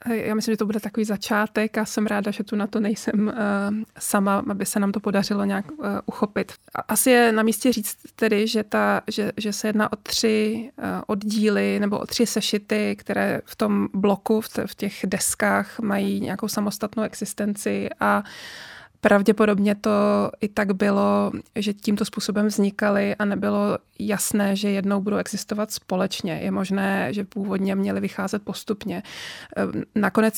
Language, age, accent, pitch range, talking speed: Czech, 20-39, native, 200-215 Hz, 150 wpm